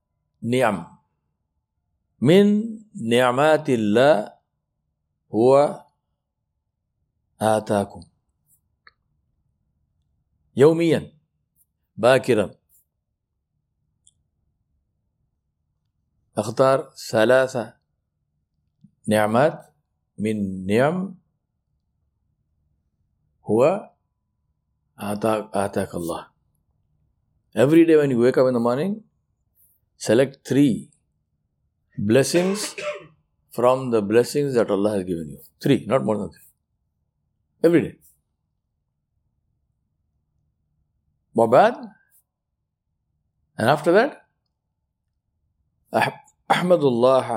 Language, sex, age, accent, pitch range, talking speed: English, male, 50-69, Indian, 85-140 Hz, 60 wpm